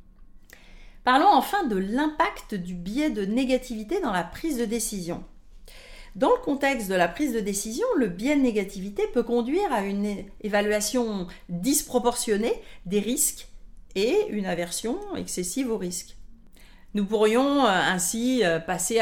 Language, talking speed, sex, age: French, 135 wpm, female, 40-59